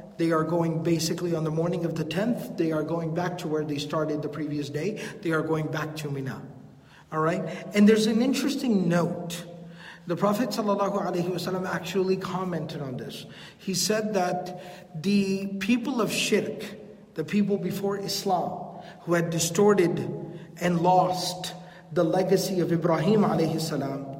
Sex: male